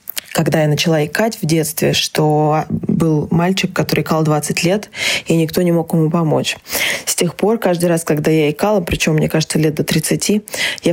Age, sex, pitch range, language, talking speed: 20-39, female, 160-200 Hz, Russian, 185 wpm